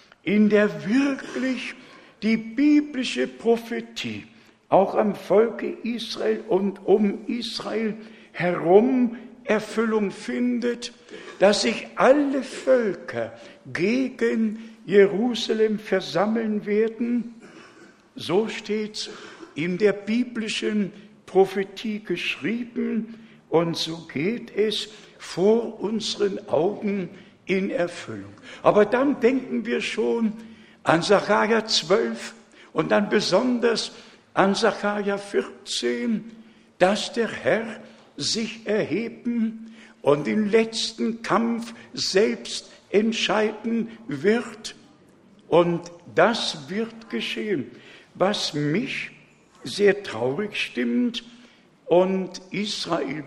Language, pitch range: German, 190-230 Hz